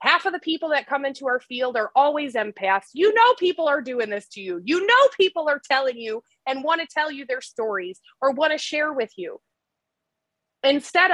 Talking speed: 215 wpm